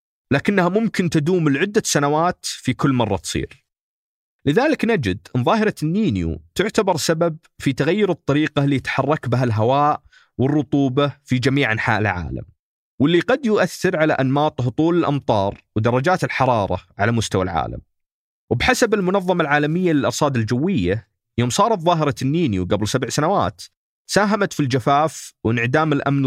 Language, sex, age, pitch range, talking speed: Arabic, male, 40-59, 115-165 Hz, 130 wpm